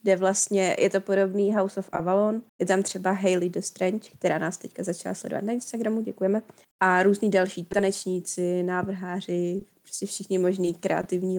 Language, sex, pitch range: Czech, female, 175-195 Hz